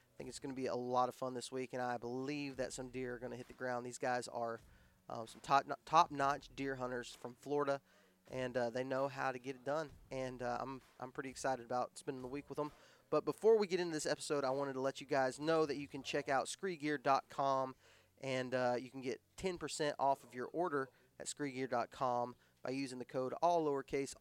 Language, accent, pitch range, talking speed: English, American, 125-145 Hz, 240 wpm